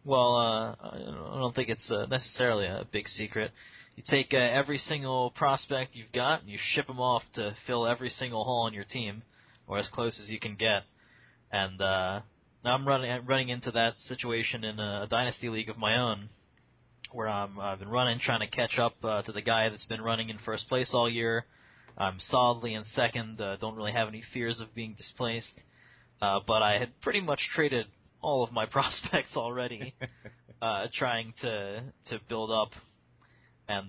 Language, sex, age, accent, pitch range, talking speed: English, male, 20-39, American, 110-125 Hz, 195 wpm